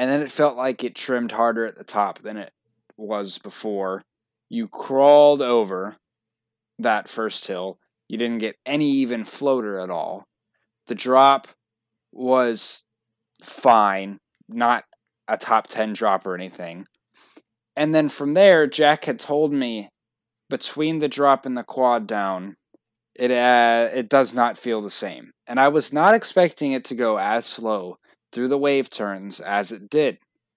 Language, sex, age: English, male, 20-39